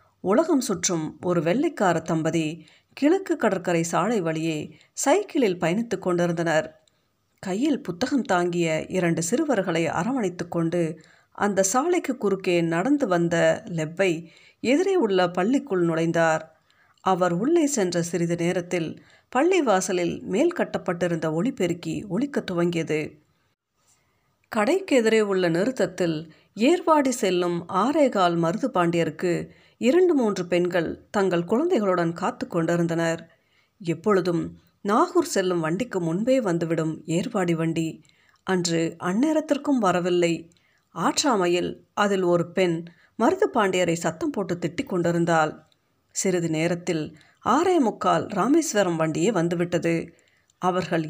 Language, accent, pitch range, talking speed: Tamil, native, 165-215 Hz, 95 wpm